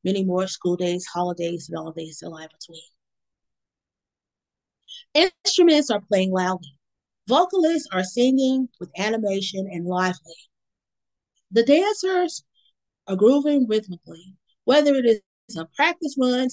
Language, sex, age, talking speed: English, female, 30-49, 115 wpm